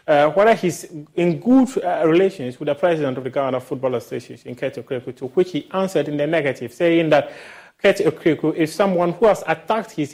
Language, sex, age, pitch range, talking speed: English, male, 30-49, 140-175 Hz, 205 wpm